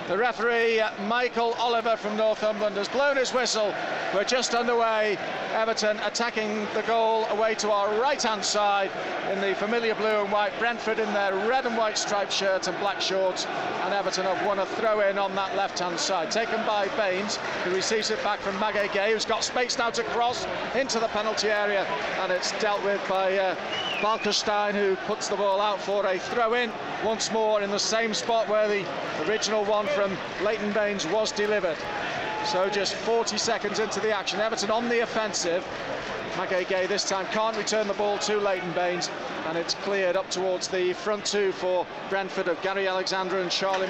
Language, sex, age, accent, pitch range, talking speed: English, male, 40-59, British, 195-220 Hz, 185 wpm